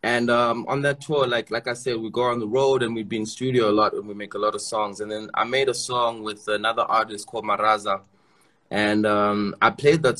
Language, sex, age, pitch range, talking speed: English, male, 20-39, 105-120 Hz, 260 wpm